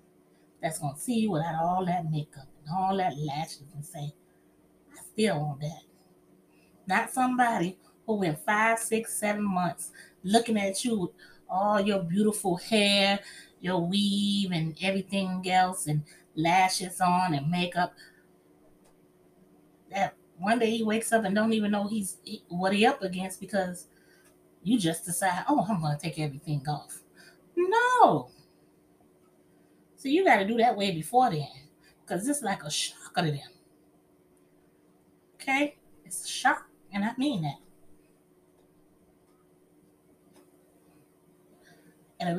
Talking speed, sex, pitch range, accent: 135 wpm, female, 145-220 Hz, American